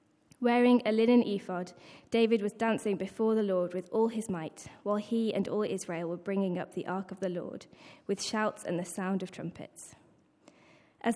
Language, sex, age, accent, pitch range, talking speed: English, female, 20-39, British, 185-225 Hz, 190 wpm